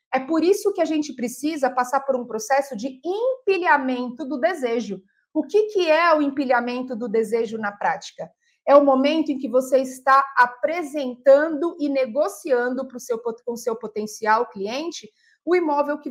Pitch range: 255-320 Hz